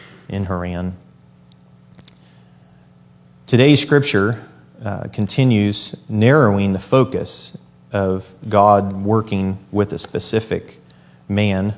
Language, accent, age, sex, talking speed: English, American, 30-49, male, 80 wpm